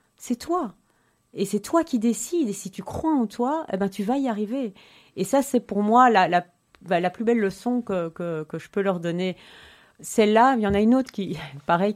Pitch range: 160-220 Hz